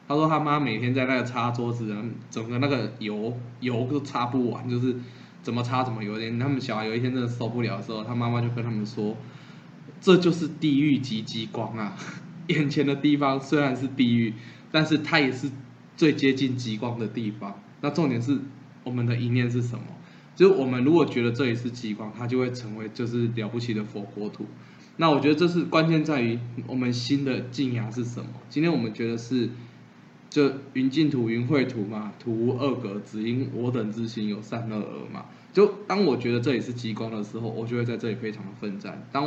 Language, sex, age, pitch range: Chinese, male, 20-39, 115-135 Hz